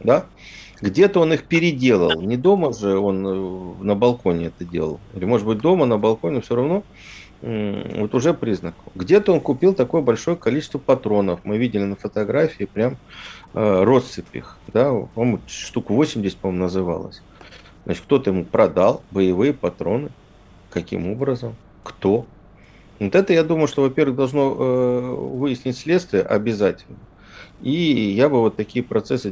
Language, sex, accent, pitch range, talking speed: Russian, male, native, 95-130 Hz, 140 wpm